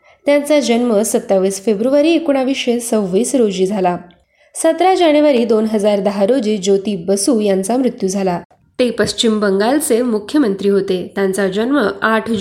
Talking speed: 125 wpm